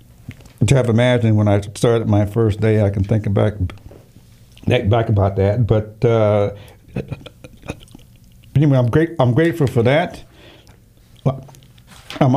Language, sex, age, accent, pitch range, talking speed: English, male, 60-79, American, 105-125 Hz, 125 wpm